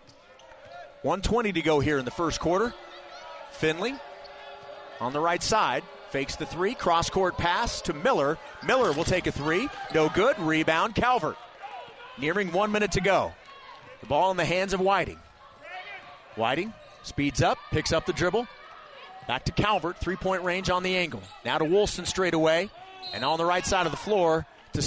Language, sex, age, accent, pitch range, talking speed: English, male, 30-49, American, 140-185 Hz, 170 wpm